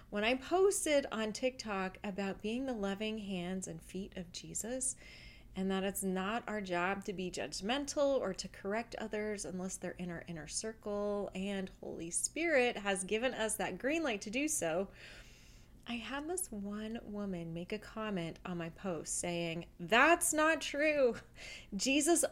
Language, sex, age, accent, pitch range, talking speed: English, female, 30-49, American, 190-255 Hz, 165 wpm